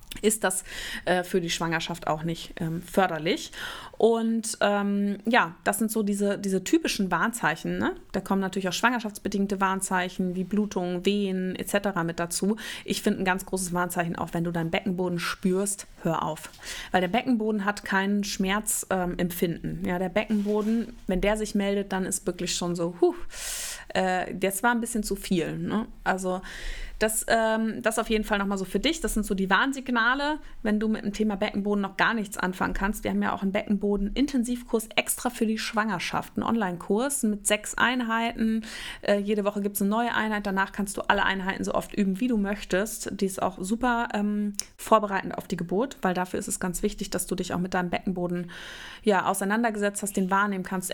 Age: 20-39